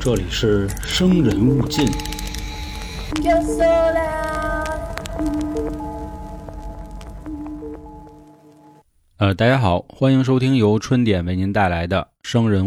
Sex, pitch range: male, 90-120 Hz